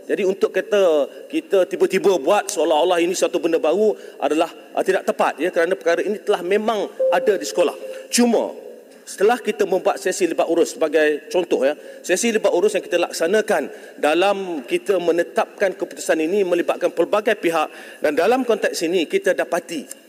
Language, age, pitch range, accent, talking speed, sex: English, 40-59, 185-260 Hz, Malaysian, 160 wpm, male